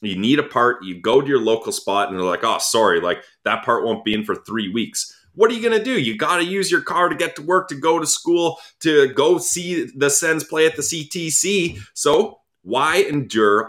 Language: English